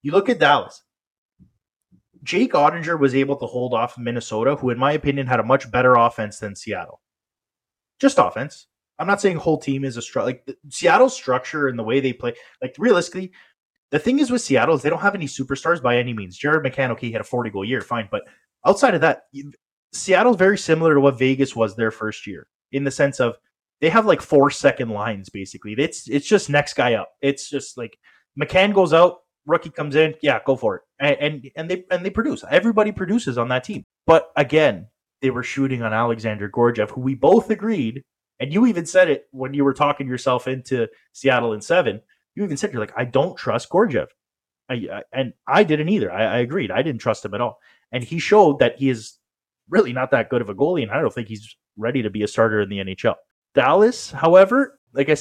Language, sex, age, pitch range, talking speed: English, male, 20-39, 120-165 Hz, 220 wpm